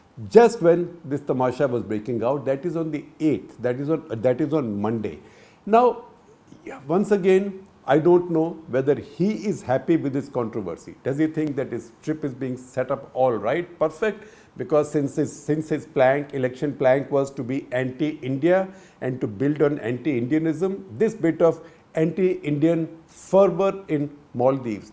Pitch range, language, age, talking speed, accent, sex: 125-170 Hz, English, 50-69, 170 wpm, Indian, male